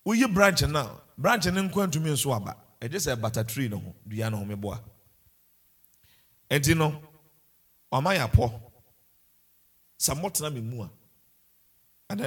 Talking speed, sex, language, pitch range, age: 155 wpm, male, English, 105-165 Hz, 50-69